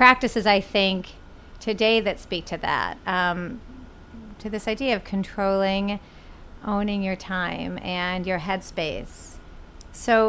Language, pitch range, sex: English, 185-230 Hz, female